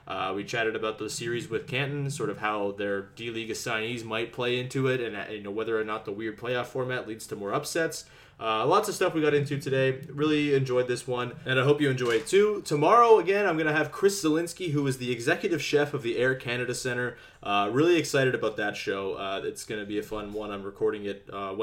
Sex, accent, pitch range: male, American, 105-140 Hz